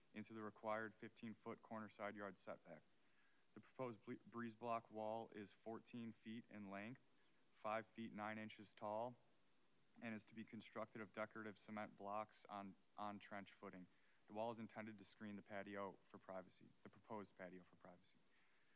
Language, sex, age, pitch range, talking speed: English, male, 30-49, 105-115 Hz, 165 wpm